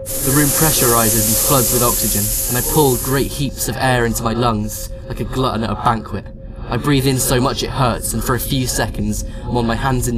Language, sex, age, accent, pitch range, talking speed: English, male, 10-29, British, 110-125 Hz, 235 wpm